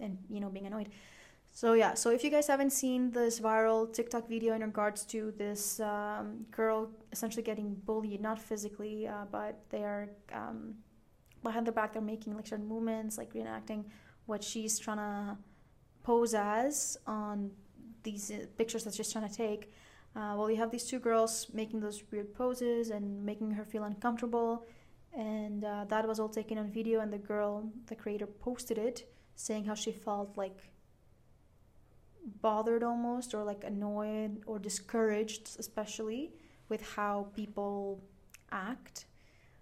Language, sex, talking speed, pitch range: English, female, 160 wpm, 210-230 Hz